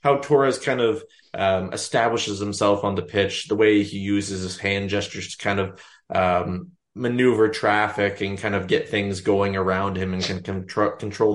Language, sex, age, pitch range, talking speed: English, male, 20-39, 100-115 Hz, 185 wpm